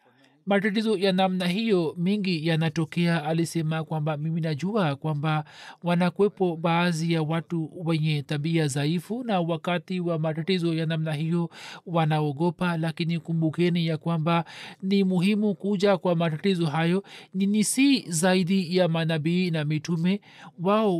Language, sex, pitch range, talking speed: Swahili, male, 160-190 Hz, 125 wpm